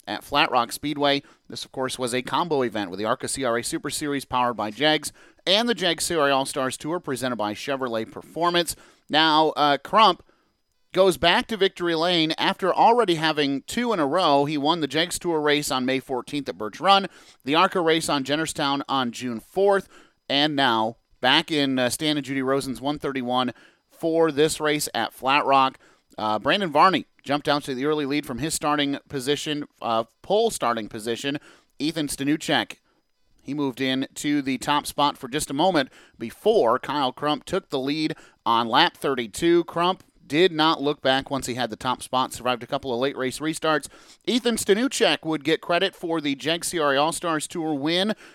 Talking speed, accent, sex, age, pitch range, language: 185 wpm, American, male, 30-49, 130-160 Hz, English